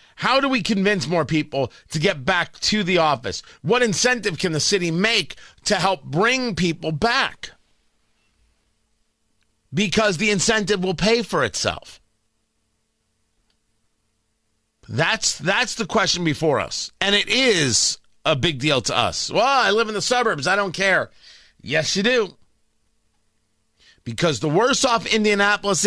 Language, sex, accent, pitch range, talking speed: English, male, American, 150-225 Hz, 140 wpm